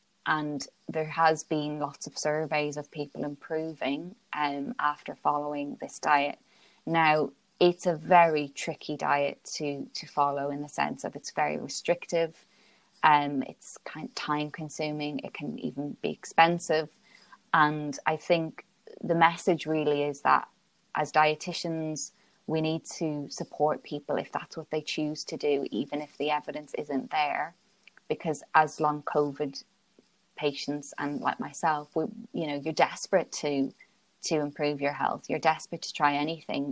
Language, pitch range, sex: English, 145-160 Hz, female